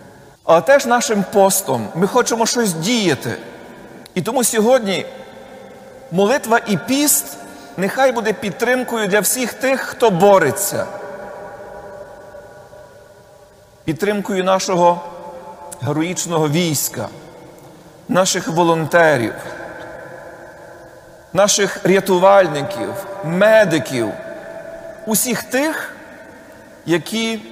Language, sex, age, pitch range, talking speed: Ukrainian, male, 40-59, 165-220 Hz, 75 wpm